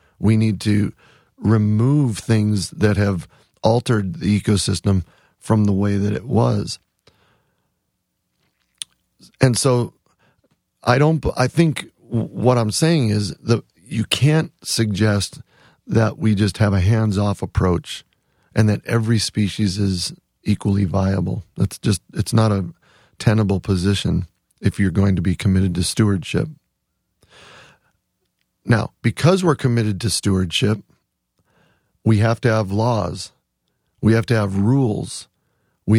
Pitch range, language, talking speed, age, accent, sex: 100-125 Hz, English, 130 wpm, 40-59, American, male